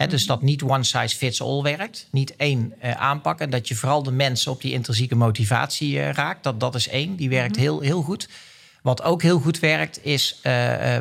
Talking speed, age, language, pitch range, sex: 225 wpm, 40-59, Dutch, 125-155 Hz, male